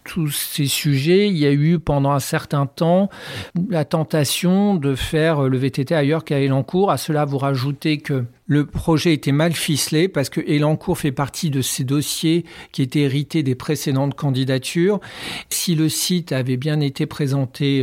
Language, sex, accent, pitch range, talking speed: French, male, French, 135-165 Hz, 170 wpm